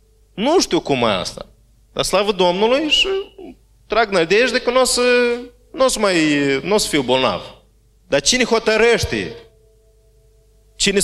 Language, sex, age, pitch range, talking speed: Romanian, male, 30-49, 130-195 Hz, 140 wpm